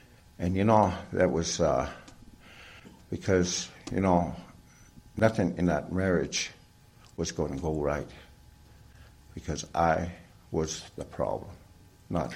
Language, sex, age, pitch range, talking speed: English, male, 60-79, 85-115 Hz, 115 wpm